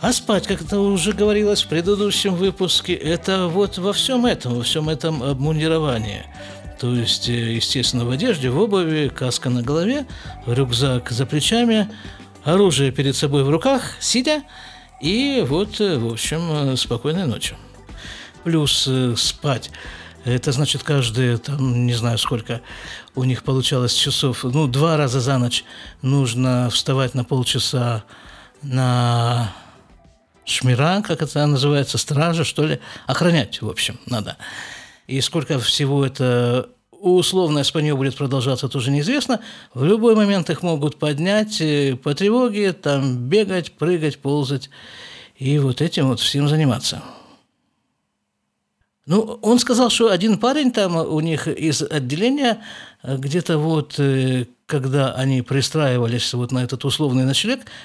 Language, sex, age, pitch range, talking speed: Russian, male, 50-69, 125-180 Hz, 130 wpm